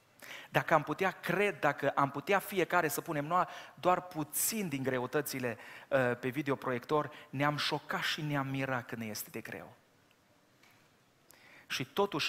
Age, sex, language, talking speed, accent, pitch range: 30-49, male, Romanian, 140 wpm, native, 125-155 Hz